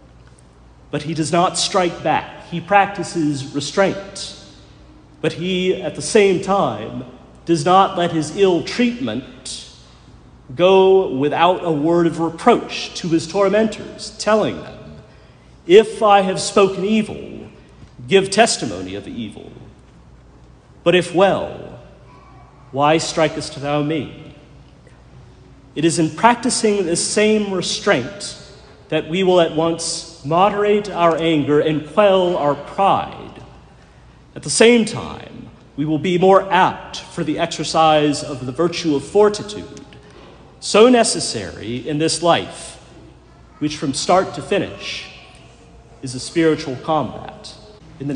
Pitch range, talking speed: 145-195 Hz, 125 wpm